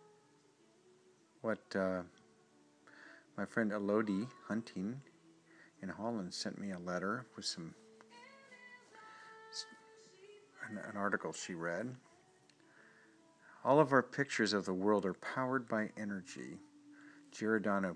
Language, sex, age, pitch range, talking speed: English, male, 50-69, 95-130 Hz, 105 wpm